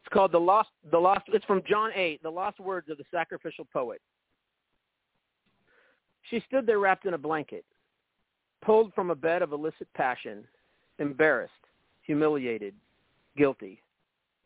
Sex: male